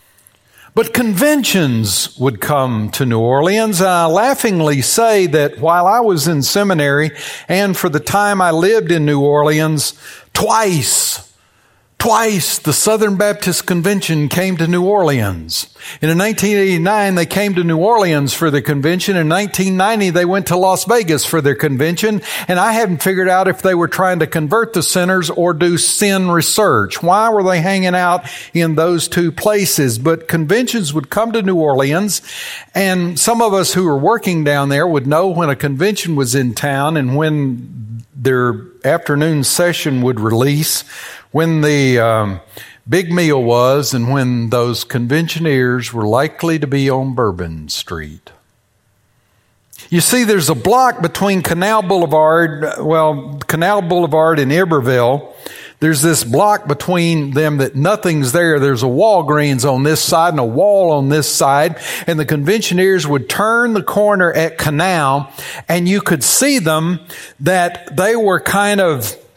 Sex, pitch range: male, 140-185 Hz